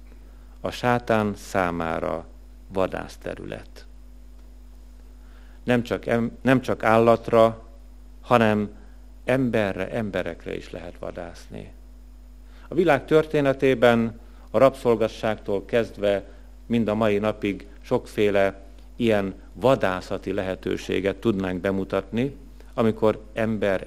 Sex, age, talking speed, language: male, 50-69, 80 wpm, Hungarian